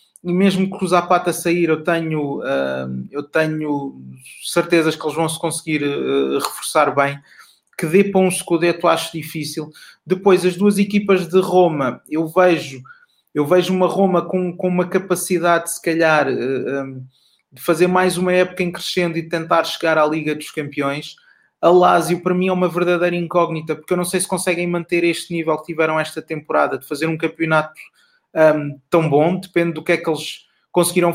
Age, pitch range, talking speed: 20-39, 155-180 Hz, 185 wpm